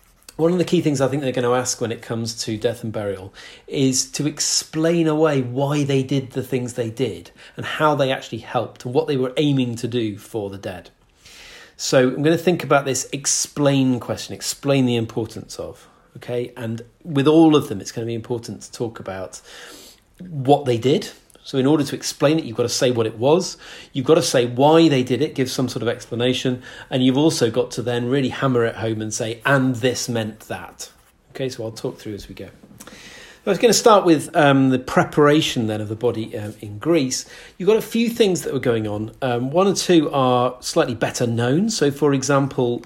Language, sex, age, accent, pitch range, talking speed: English, male, 40-59, British, 115-145 Hz, 225 wpm